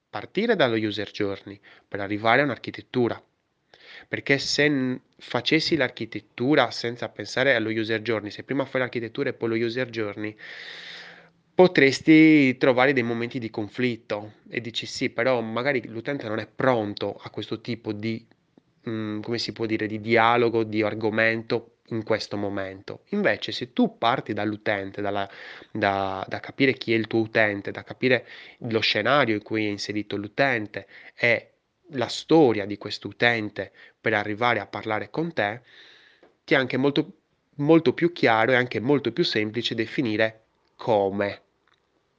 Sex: male